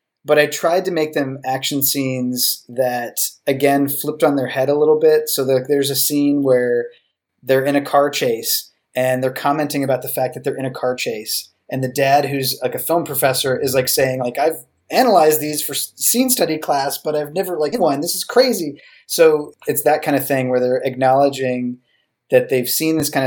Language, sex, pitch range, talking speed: English, male, 125-150 Hz, 205 wpm